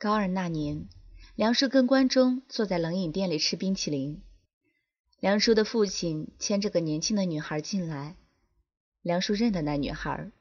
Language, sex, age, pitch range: Chinese, female, 20-39, 165-215 Hz